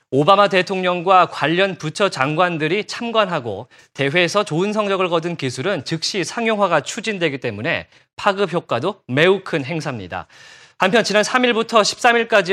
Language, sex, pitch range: Korean, male, 160-210 Hz